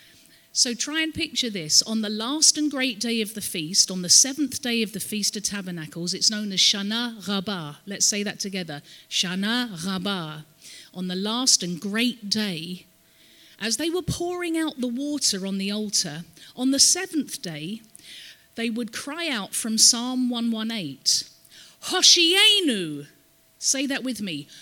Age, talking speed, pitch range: 40-59, 160 wpm, 190-270 Hz